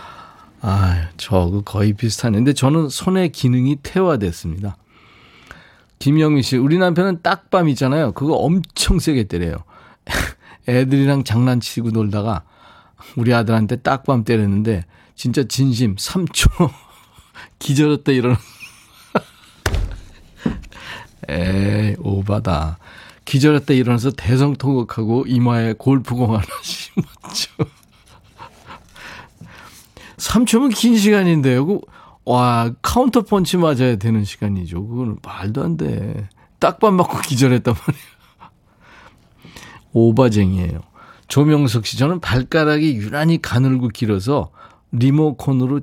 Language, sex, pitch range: Korean, male, 105-145 Hz